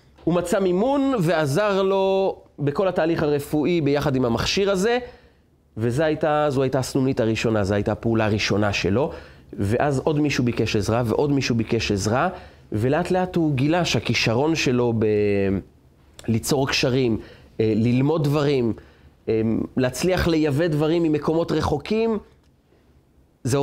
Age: 30-49